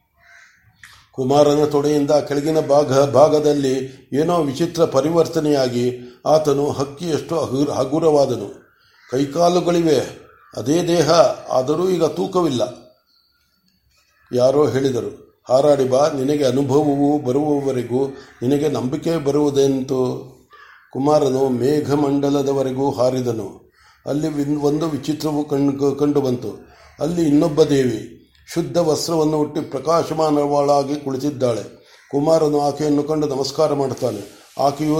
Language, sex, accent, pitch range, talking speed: Kannada, male, native, 140-160 Hz, 85 wpm